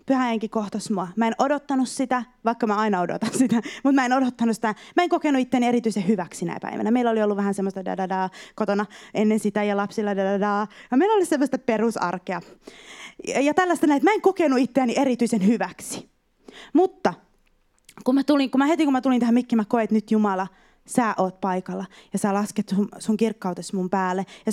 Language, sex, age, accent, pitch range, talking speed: Finnish, female, 20-39, native, 205-260 Hz, 185 wpm